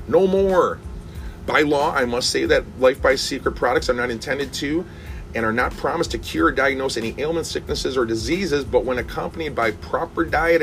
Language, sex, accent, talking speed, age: English, male, American, 190 wpm, 30-49